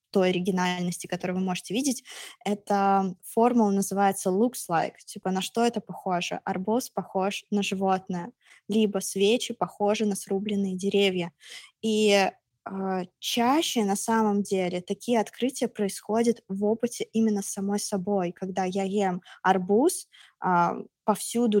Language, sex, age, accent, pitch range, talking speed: Russian, female, 20-39, native, 195-230 Hz, 130 wpm